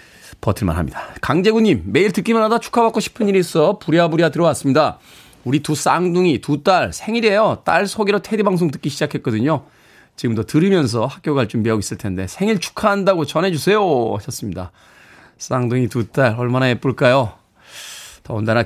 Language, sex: Korean, male